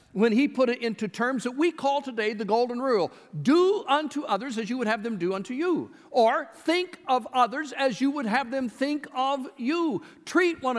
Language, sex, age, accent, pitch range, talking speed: English, male, 60-79, American, 210-290 Hz, 210 wpm